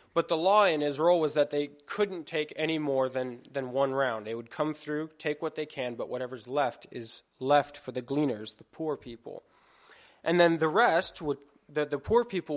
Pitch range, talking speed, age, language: 125-155 Hz, 210 wpm, 20-39, English